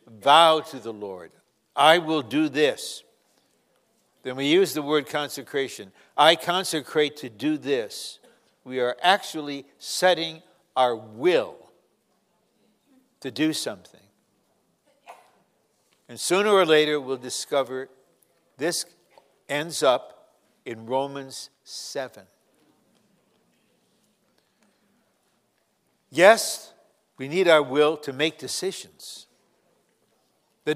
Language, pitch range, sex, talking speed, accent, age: English, 135-185 Hz, male, 95 wpm, American, 60-79